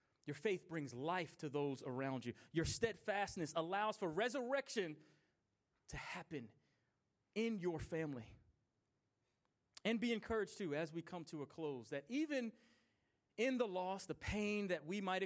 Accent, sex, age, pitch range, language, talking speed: American, male, 30-49, 155-200 Hz, English, 150 wpm